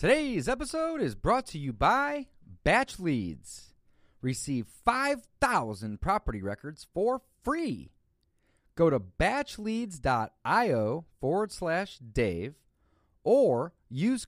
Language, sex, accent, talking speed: English, male, American, 85 wpm